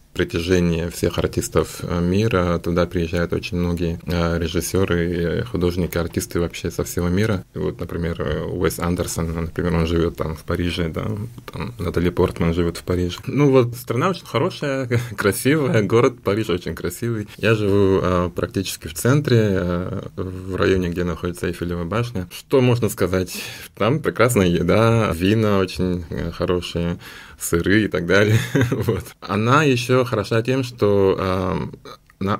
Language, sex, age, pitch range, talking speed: Russian, male, 20-39, 85-105 Hz, 135 wpm